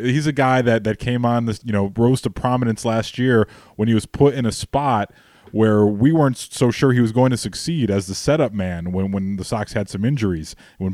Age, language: 20-39, English